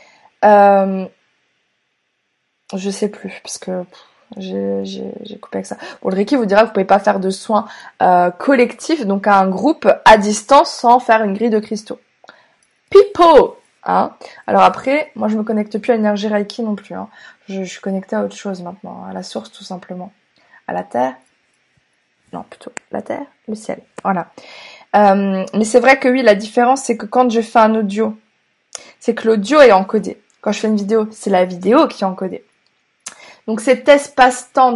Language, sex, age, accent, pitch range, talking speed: French, female, 20-39, French, 195-240 Hz, 190 wpm